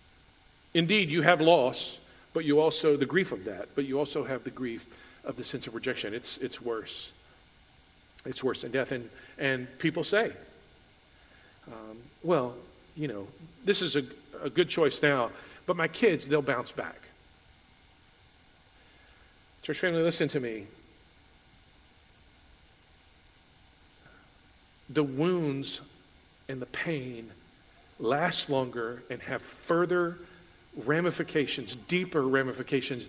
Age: 50-69